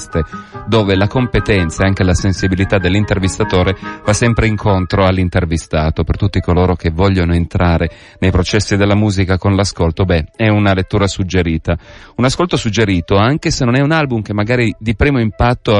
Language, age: Italian, 30-49